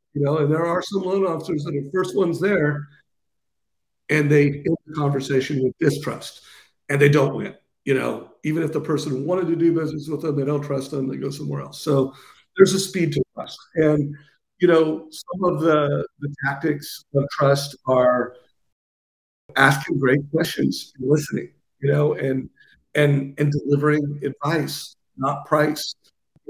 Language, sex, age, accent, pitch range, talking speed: English, male, 50-69, American, 135-155 Hz, 170 wpm